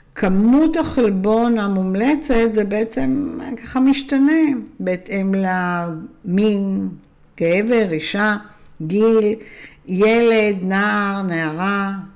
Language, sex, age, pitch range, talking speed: Hebrew, female, 60-79, 170-220 Hz, 75 wpm